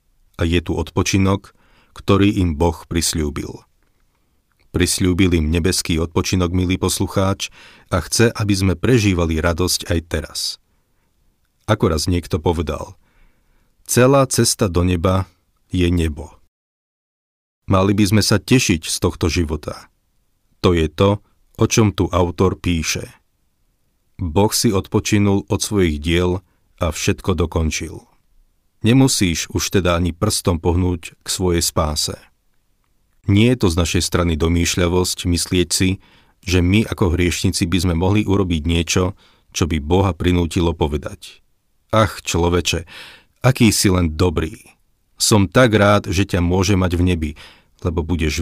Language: Slovak